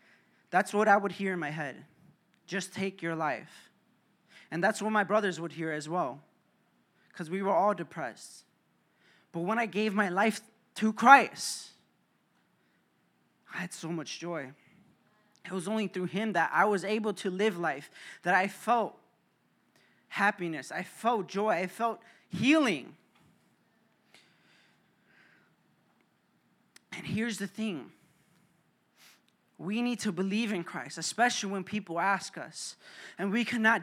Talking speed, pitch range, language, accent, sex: 140 wpm, 180-220 Hz, English, American, male